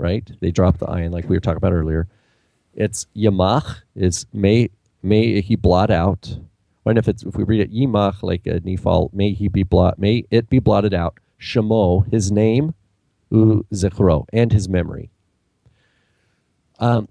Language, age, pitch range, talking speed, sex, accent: English, 40-59, 90-110 Hz, 165 wpm, male, American